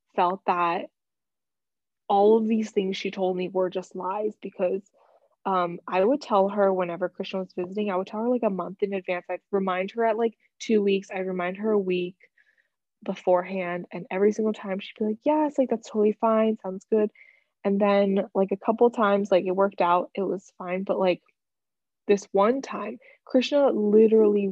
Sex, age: female, 20-39